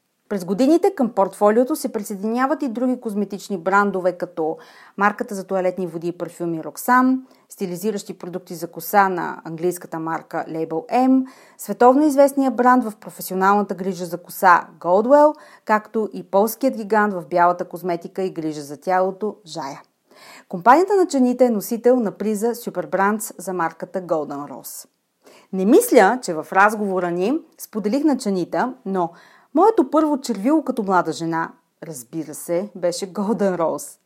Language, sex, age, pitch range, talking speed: Bulgarian, female, 30-49, 180-240 Hz, 145 wpm